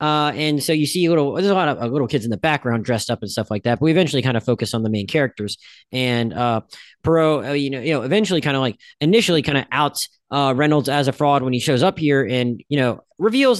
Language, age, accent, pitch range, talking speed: English, 30-49, American, 125-160 Hz, 280 wpm